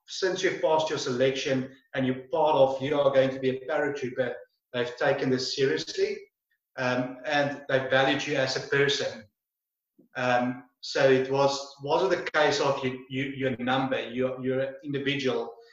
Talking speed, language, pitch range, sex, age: 160 wpm, English, 130-150 Hz, male, 30-49